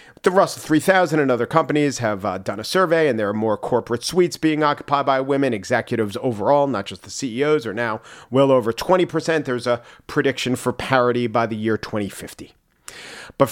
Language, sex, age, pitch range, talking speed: English, male, 40-59, 115-155 Hz, 185 wpm